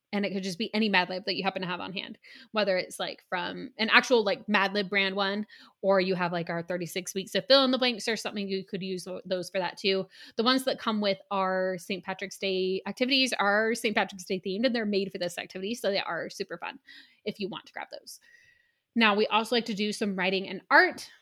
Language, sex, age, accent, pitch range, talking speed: English, female, 20-39, American, 195-245 Hz, 250 wpm